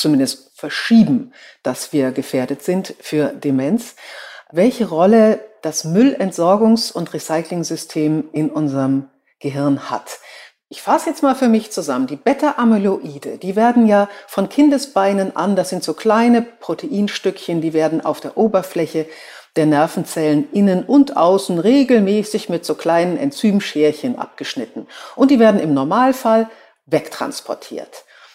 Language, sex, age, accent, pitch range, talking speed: German, female, 60-79, German, 160-235 Hz, 125 wpm